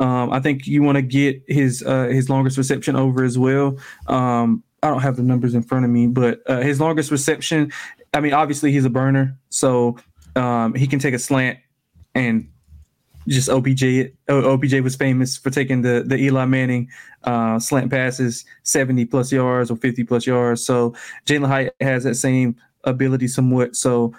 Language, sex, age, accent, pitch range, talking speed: English, male, 20-39, American, 125-135 Hz, 180 wpm